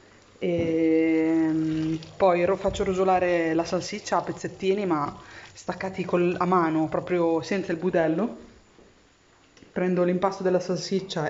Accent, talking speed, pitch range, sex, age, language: native, 105 wpm, 160-190 Hz, female, 20-39, Italian